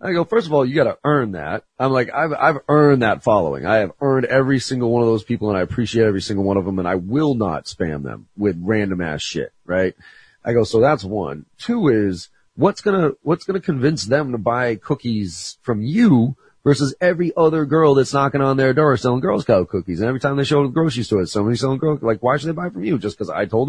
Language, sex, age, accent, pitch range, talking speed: English, male, 30-49, American, 100-140 Hz, 245 wpm